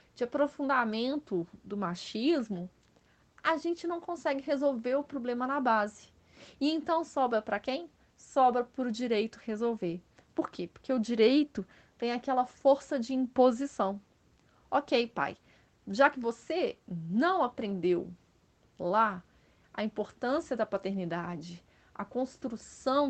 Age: 30-49